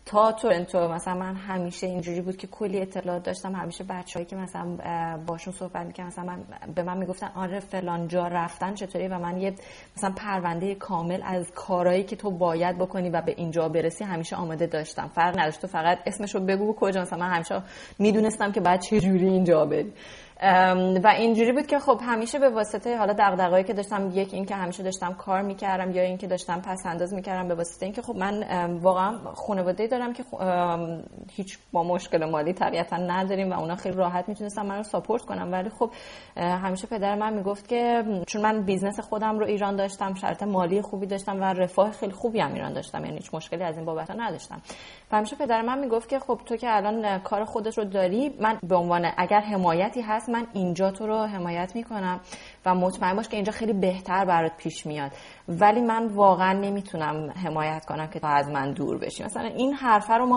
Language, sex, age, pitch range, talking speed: Persian, female, 30-49, 175-210 Hz, 200 wpm